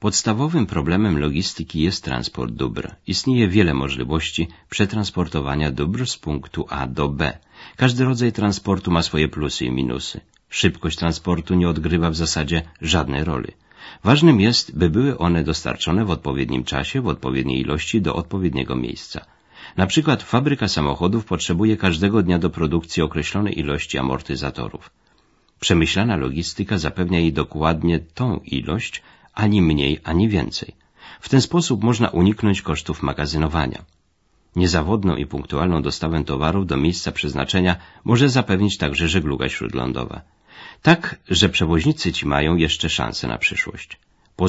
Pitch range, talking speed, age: 75-100 Hz, 135 wpm, 50-69